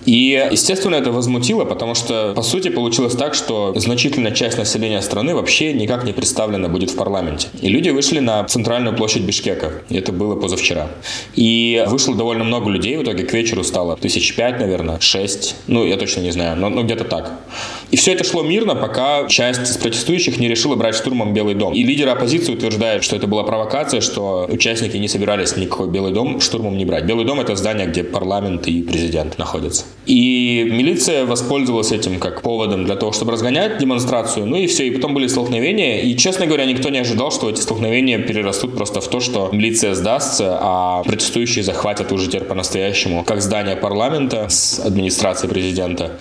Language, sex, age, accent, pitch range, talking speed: Russian, male, 20-39, native, 95-120 Hz, 185 wpm